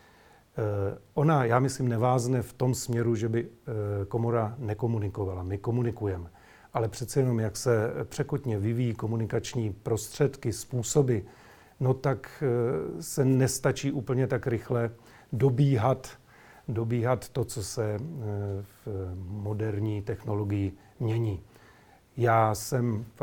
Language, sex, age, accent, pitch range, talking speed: Czech, male, 40-59, native, 110-125 Hz, 110 wpm